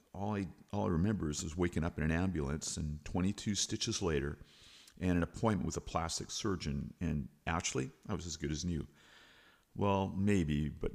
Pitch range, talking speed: 75-105 Hz, 185 wpm